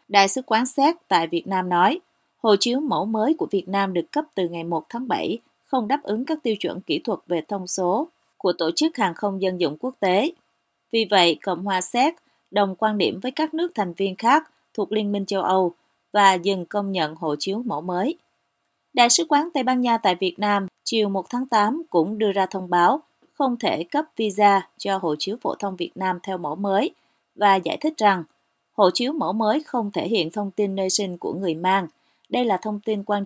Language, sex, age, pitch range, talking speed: Vietnamese, female, 30-49, 185-240 Hz, 225 wpm